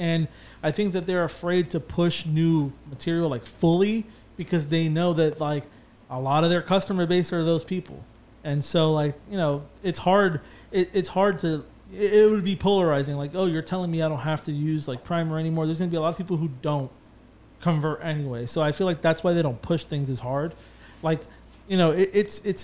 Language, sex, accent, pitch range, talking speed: English, male, American, 145-175 Hz, 225 wpm